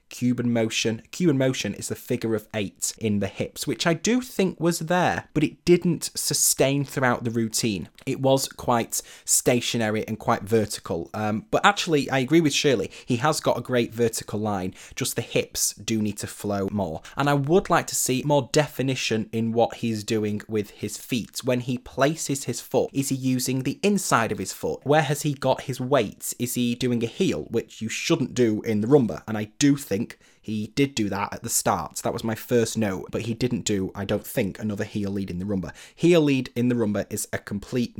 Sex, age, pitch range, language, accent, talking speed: male, 20-39, 110-140 Hz, English, British, 215 wpm